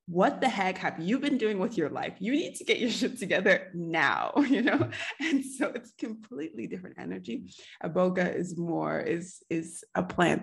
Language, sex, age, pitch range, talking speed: English, female, 20-39, 160-220 Hz, 195 wpm